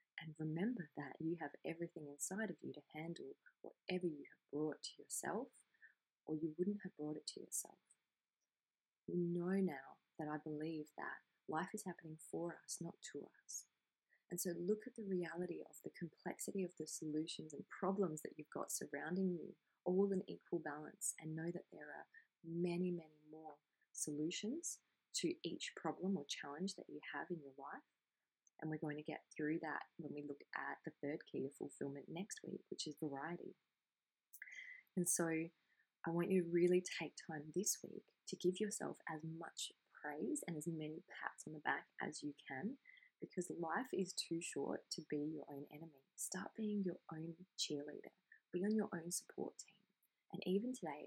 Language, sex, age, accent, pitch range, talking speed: English, female, 20-39, Australian, 155-190 Hz, 180 wpm